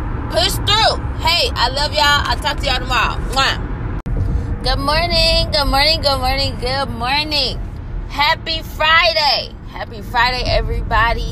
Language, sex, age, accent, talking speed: English, female, 20-39, American, 125 wpm